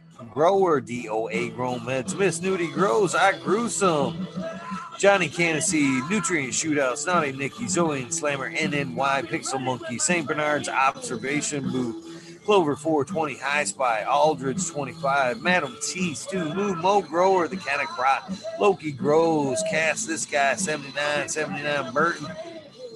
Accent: American